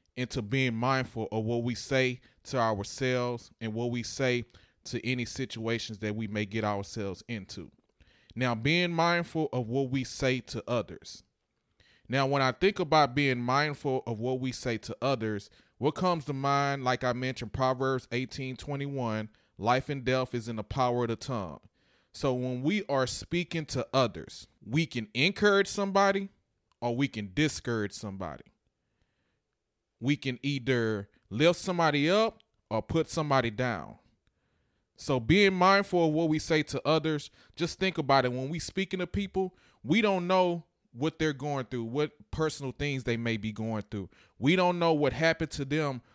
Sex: male